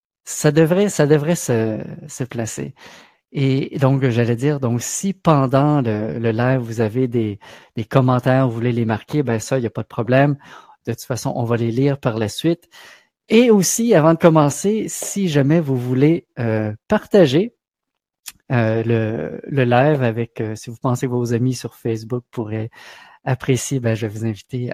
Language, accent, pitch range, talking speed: French, Canadian, 120-165 Hz, 185 wpm